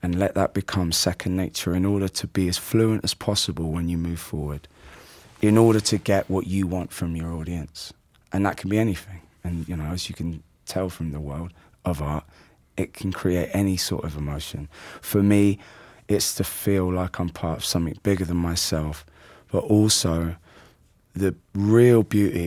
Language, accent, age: English, British, 20-39